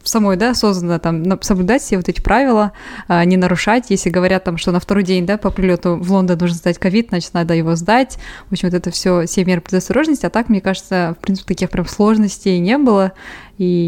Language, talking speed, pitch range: Russian, 215 wpm, 180-210 Hz